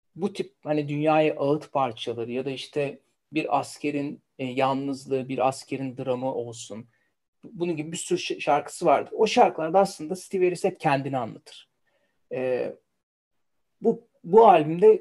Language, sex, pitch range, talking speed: Turkish, male, 135-175 Hz, 140 wpm